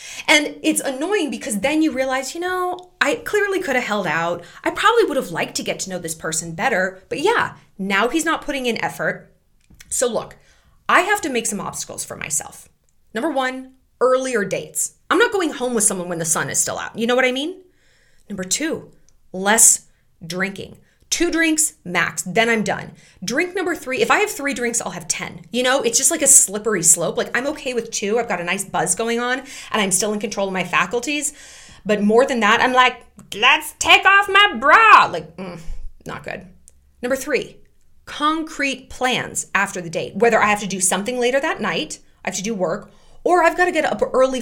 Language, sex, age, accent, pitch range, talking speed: English, female, 20-39, American, 195-295 Hz, 210 wpm